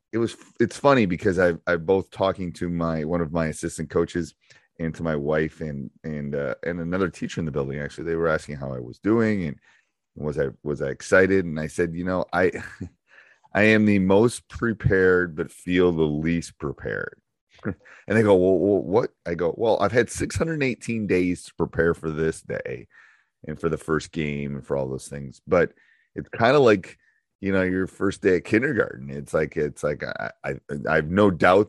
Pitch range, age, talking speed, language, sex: 75-95 Hz, 30-49, 210 wpm, English, male